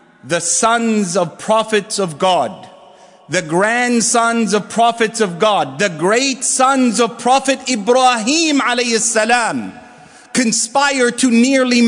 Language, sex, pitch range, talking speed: English, male, 195-245 Hz, 105 wpm